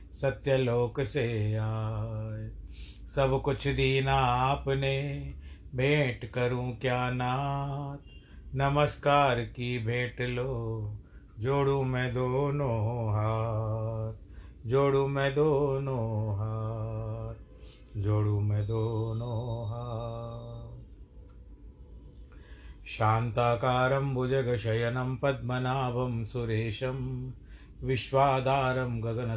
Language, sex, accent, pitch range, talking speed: Hindi, male, native, 110-135 Hz, 75 wpm